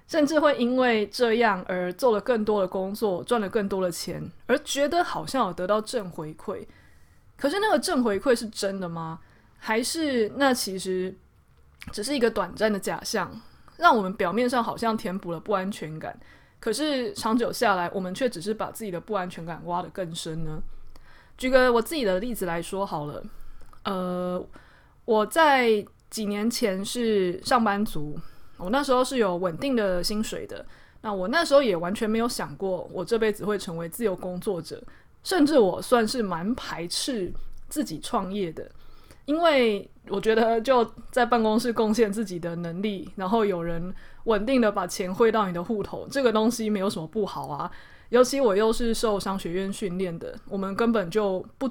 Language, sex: Chinese, female